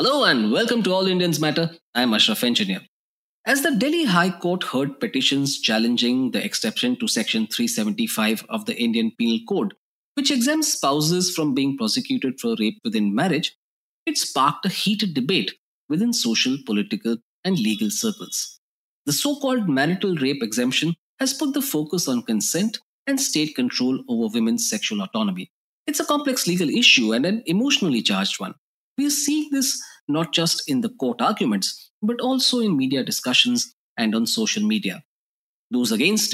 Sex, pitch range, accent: male, 165-250 Hz, Indian